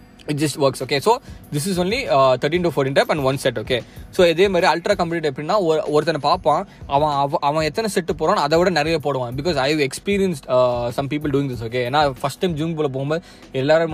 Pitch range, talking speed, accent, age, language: 130-170 Hz, 230 wpm, native, 20-39, Tamil